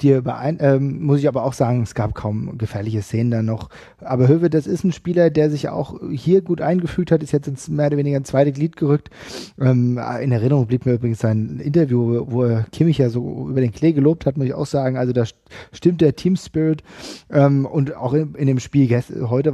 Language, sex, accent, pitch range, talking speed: German, male, German, 130-160 Hz, 225 wpm